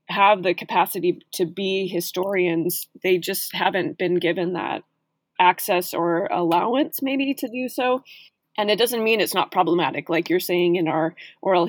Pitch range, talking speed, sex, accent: 170-195 Hz, 165 wpm, female, American